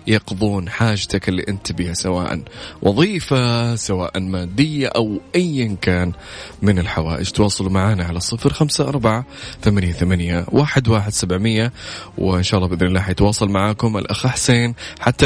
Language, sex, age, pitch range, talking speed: Arabic, male, 20-39, 90-110 Hz, 105 wpm